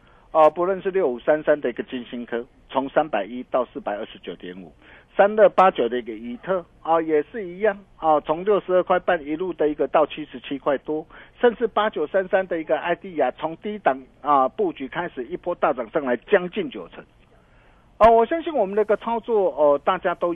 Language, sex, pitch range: Chinese, male, 140-210 Hz